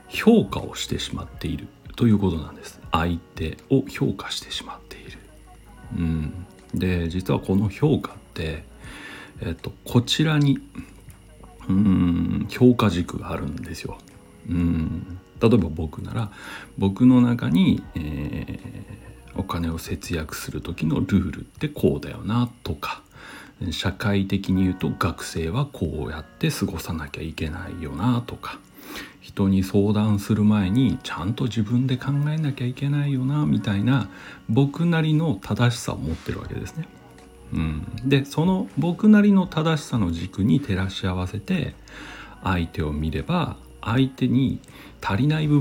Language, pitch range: Japanese, 90-130 Hz